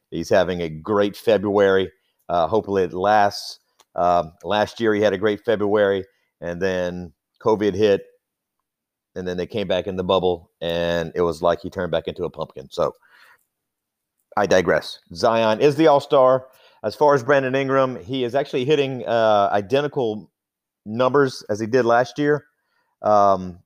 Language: English